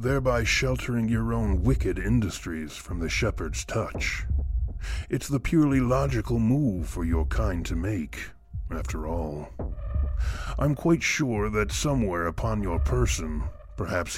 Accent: American